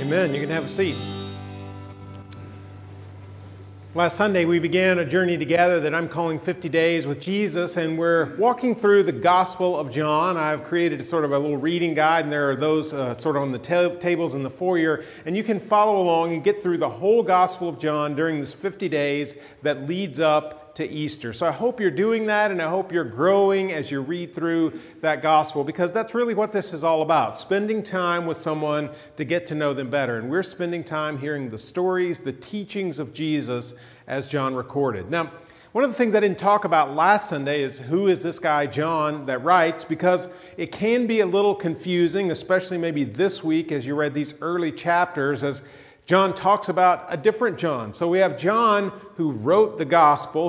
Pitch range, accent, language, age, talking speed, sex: 150-180 Hz, American, English, 40-59, 205 wpm, male